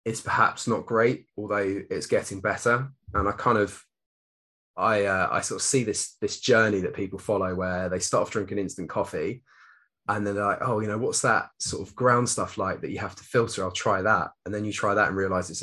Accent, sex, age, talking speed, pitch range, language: British, male, 20-39, 235 wpm, 100-125 Hz, English